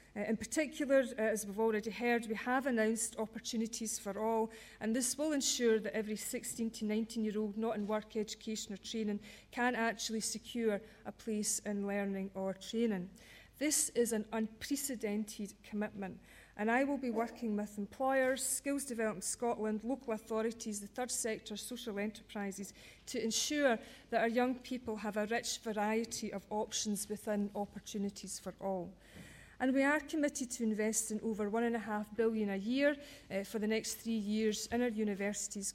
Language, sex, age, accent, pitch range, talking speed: English, female, 40-59, British, 210-235 Hz, 170 wpm